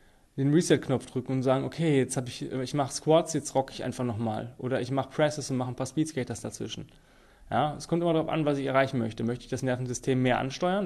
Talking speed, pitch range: 240 wpm, 125-140 Hz